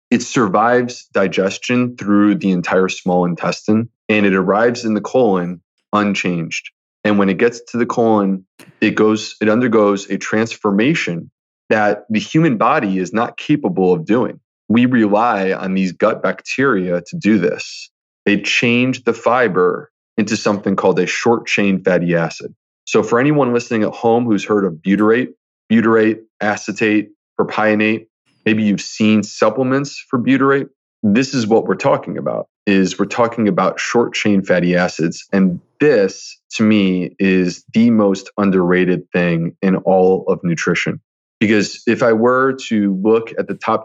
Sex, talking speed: male, 150 wpm